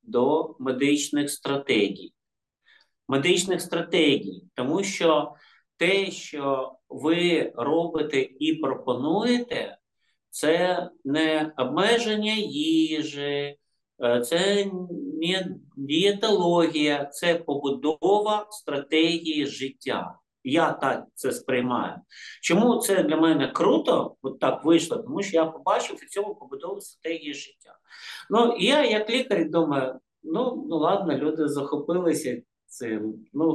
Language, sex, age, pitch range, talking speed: Ukrainian, male, 50-69, 145-195 Hz, 100 wpm